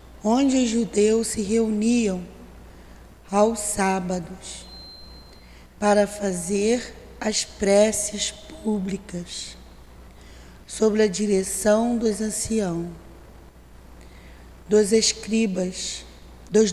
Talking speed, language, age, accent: 70 wpm, Portuguese, 20-39, Brazilian